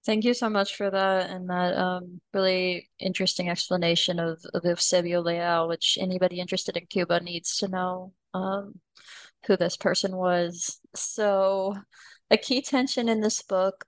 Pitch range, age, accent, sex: 175-195 Hz, 20-39, American, female